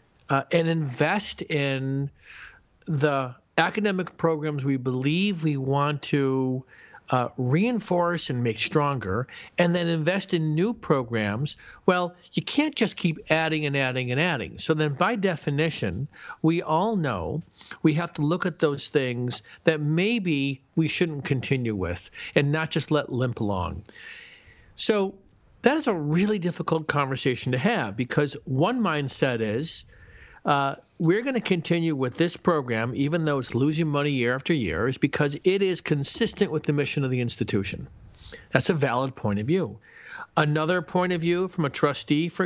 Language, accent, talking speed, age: English, American, 160 wpm, 50-69